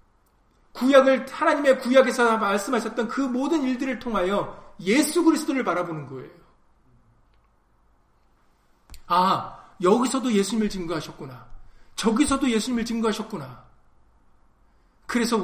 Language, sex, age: Korean, male, 40-59